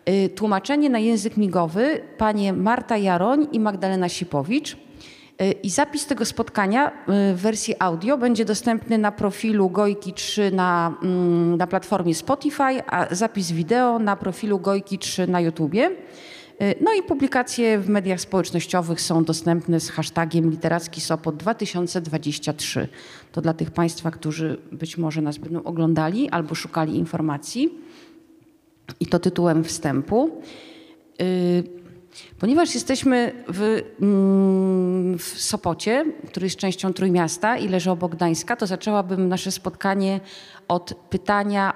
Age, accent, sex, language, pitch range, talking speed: 30-49, native, female, Polish, 170-220 Hz, 120 wpm